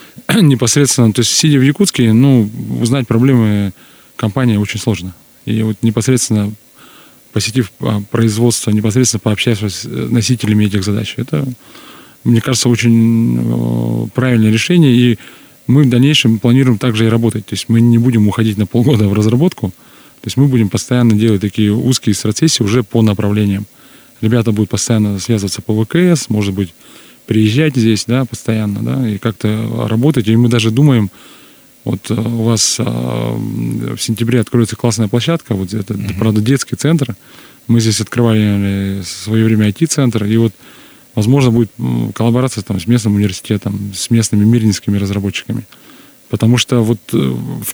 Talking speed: 145 wpm